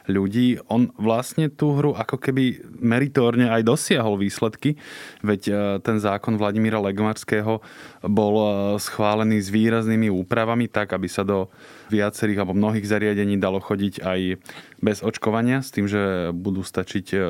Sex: male